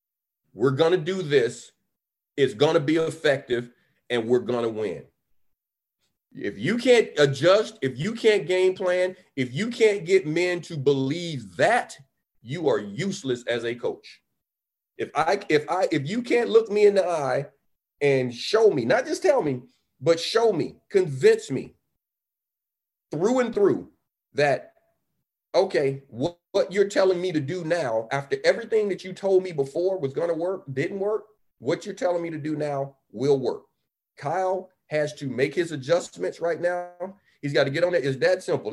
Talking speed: 175 wpm